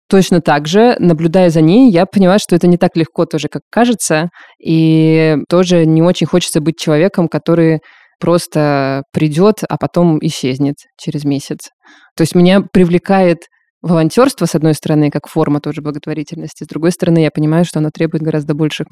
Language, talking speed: Russian, 170 wpm